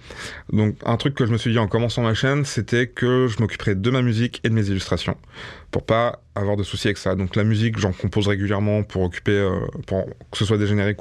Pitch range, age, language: 95-120 Hz, 20-39, French